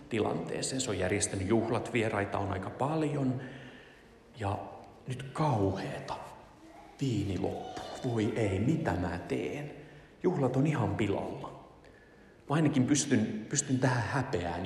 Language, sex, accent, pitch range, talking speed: Finnish, male, native, 100-130 Hz, 115 wpm